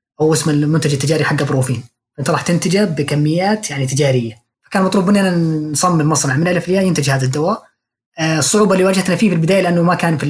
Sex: female